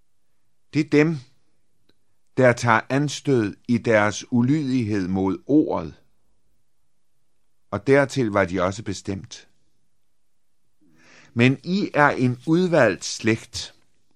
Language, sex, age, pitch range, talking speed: Danish, male, 50-69, 110-150 Hz, 95 wpm